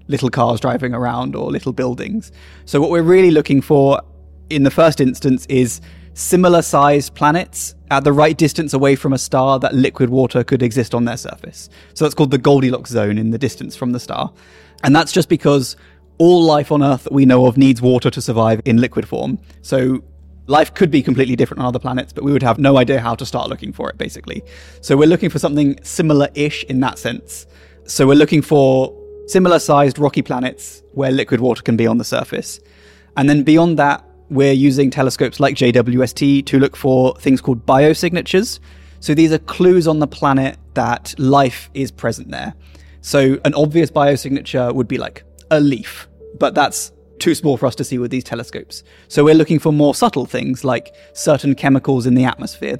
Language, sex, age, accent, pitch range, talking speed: English, male, 20-39, British, 120-145 Hz, 200 wpm